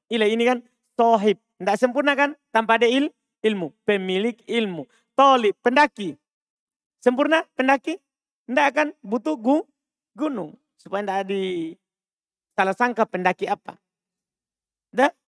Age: 40-59